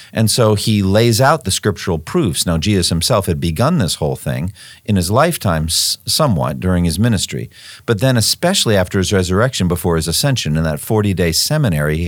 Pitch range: 85-110 Hz